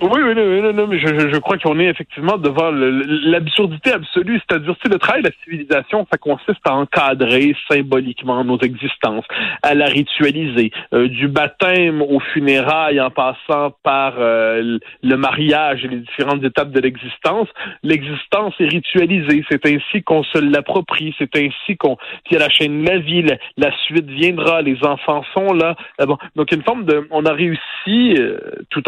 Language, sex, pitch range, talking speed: French, male, 135-170 Hz, 180 wpm